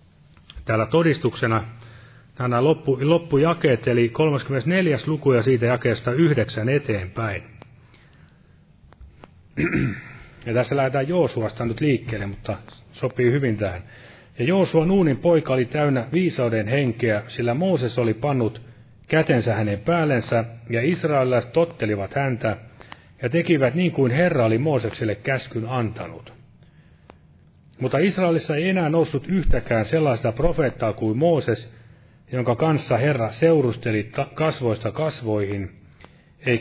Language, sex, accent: Finnish, male, native